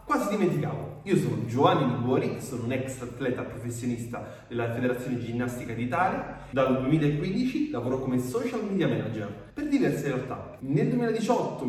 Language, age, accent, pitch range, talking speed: Italian, 30-49, native, 125-200 Hz, 140 wpm